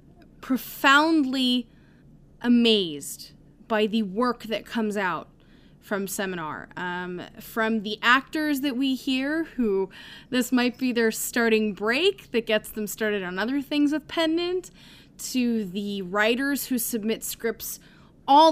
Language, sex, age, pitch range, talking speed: English, female, 10-29, 215-275 Hz, 130 wpm